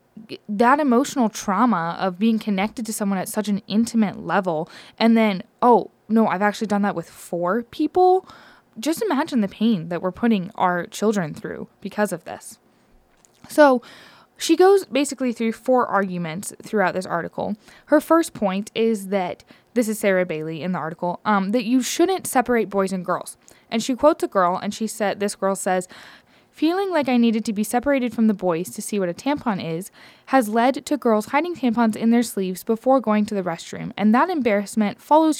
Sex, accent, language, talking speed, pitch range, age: female, American, English, 195 wpm, 190-240 Hz, 10-29